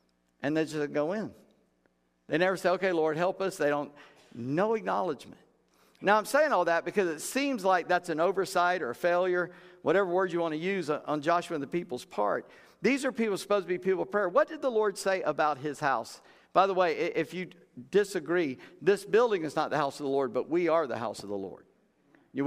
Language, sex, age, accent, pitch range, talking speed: English, male, 50-69, American, 140-190 Hz, 225 wpm